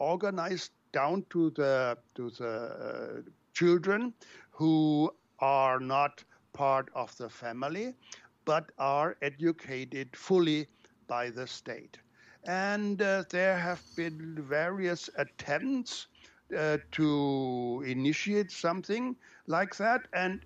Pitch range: 145-185 Hz